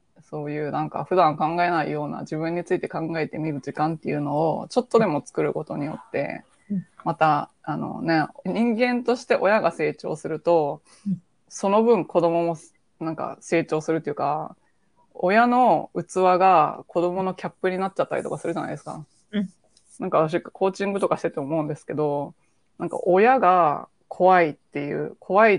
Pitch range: 155-185 Hz